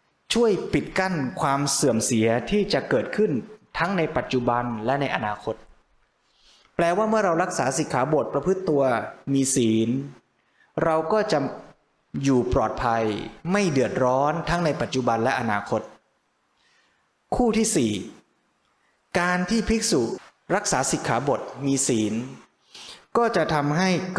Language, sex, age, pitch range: Thai, male, 20-39, 125-180 Hz